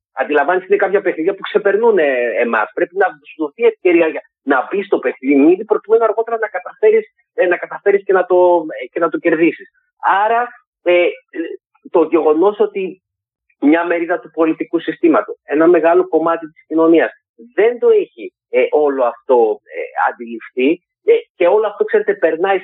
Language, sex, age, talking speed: Greek, male, 40-59, 155 wpm